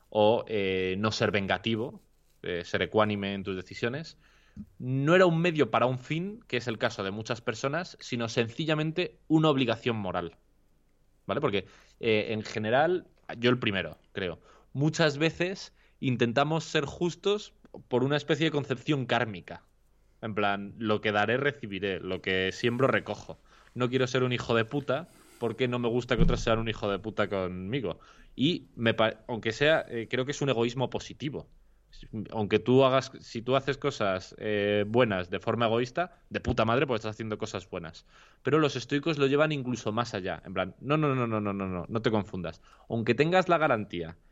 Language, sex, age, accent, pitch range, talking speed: Spanish, male, 20-39, Spanish, 105-145 Hz, 180 wpm